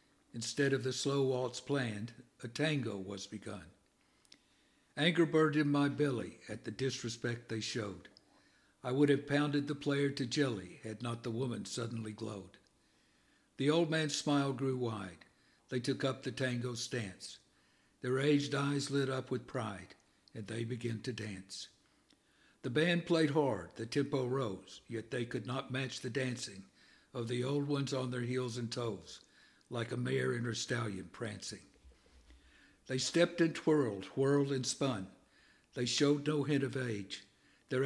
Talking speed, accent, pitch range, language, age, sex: 160 wpm, American, 115-140 Hz, English, 60-79, male